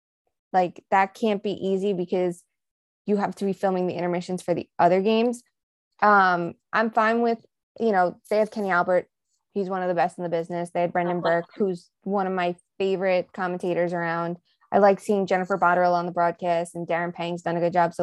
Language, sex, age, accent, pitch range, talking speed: English, female, 20-39, American, 175-205 Hz, 205 wpm